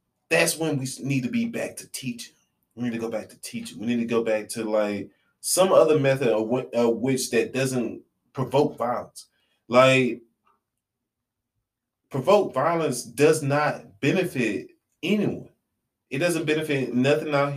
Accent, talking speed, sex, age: American, 150 wpm, male, 20-39